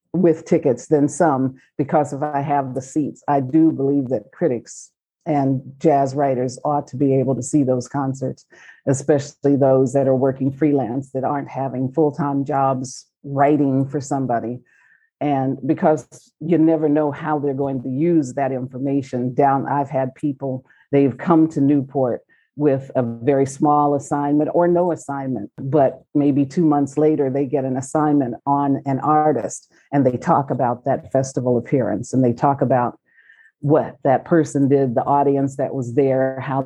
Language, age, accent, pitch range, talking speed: English, 50-69, American, 130-145 Hz, 165 wpm